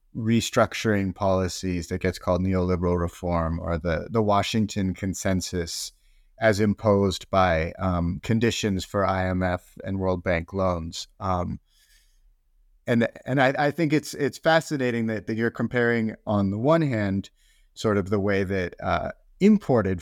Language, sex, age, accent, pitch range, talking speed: English, male, 30-49, American, 90-115 Hz, 140 wpm